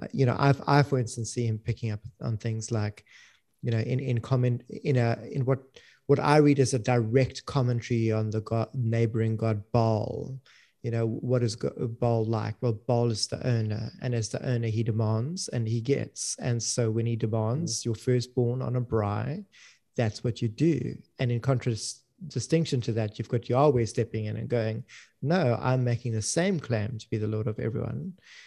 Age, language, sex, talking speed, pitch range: 30-49, English, male, 200 wpm, 115-130 Hz